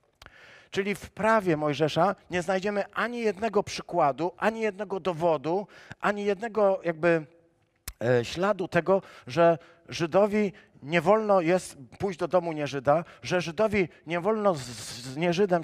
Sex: male